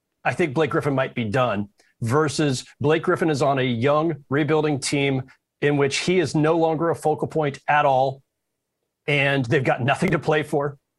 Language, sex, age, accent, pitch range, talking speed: English, male, 30-49, American, 140-175 Hz, 185 wpm